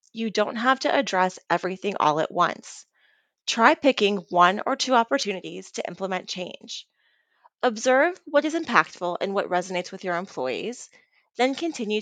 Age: 30-49